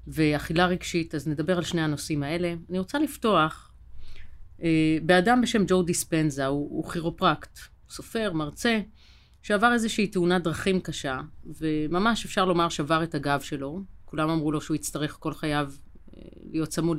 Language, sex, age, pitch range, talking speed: Hebrew, female, 30-49, 155-195 Hz, 145 wpm